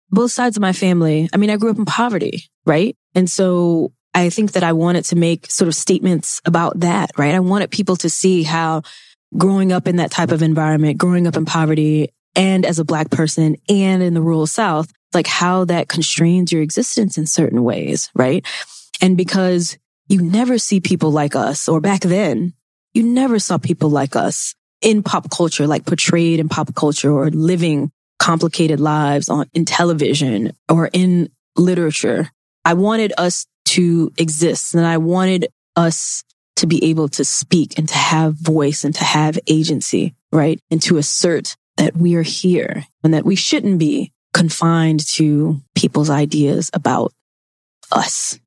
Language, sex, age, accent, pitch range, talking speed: English, female, 20-39, American, 155-180 Hz, 175 wpm